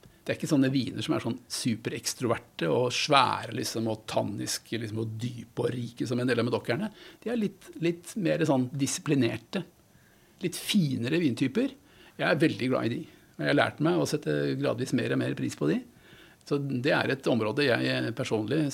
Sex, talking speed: male, 200 wpm